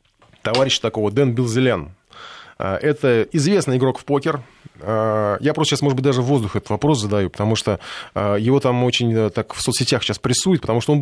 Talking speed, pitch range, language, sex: 180 wpm, 110-140 Hz, Russian, male